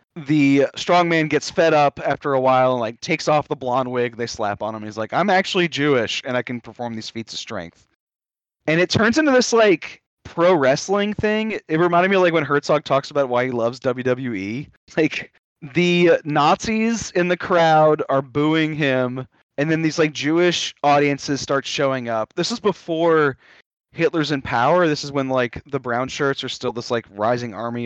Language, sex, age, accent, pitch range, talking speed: English, male, 20-39, American, 120-160 Hz, 195 wpm